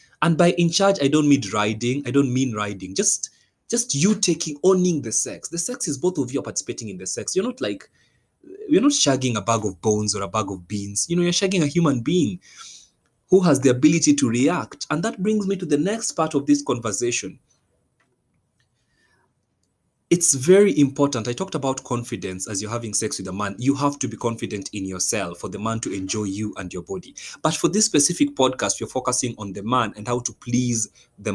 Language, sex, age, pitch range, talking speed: English, male, 20-39, 115-175 Hz, 215 wpm